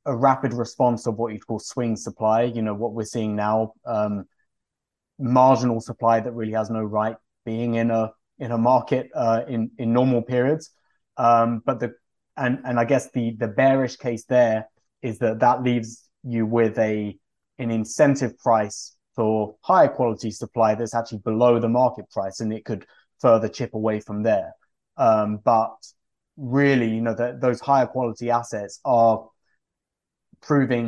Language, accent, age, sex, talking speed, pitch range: English, British, 20-39, male, 165 wpm, 110-125 Hz